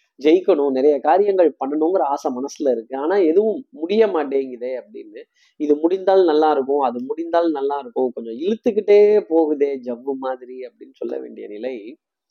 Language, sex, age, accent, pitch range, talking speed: Tamil, male, 20-39, native, 140-195 Hz, 140 wpm